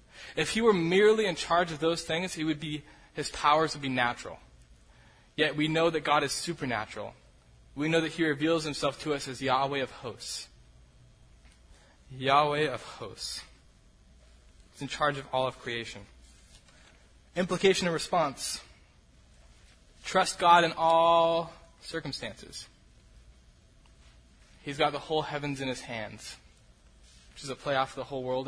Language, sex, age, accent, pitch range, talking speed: English, male, 20-39, American, 95-150 Hz, 145 wpm